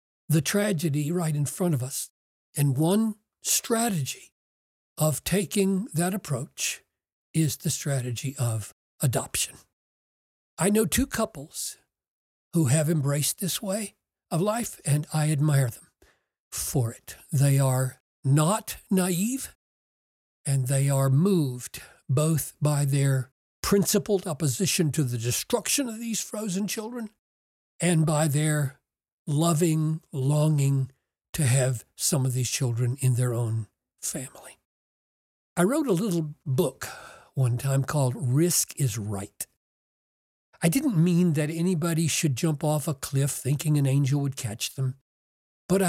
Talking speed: 130 wpm